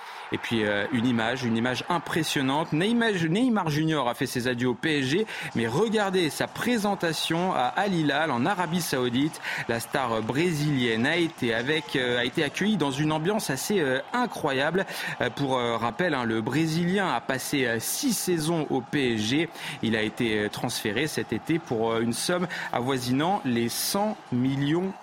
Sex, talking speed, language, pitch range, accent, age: male, 150 wpm, French, 120-170 Hz, French, 30-49